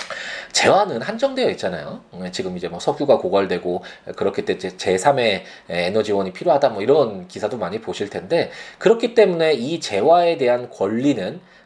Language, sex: Korean, male